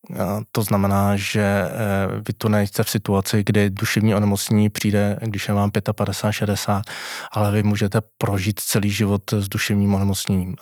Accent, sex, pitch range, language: native, male, 100-115 Hz, Czech